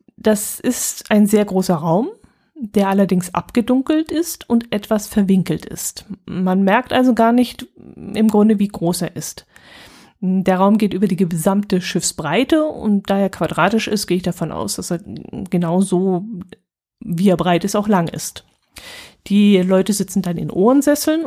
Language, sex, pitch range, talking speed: German, female, 185-230 Hz, 160 wpm